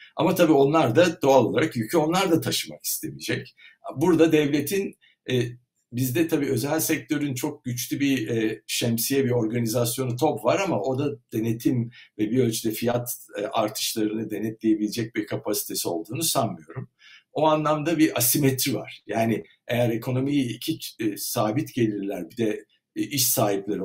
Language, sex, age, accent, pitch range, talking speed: Turkish, male, 60-79, native, 110-155 Hz, 150 wpm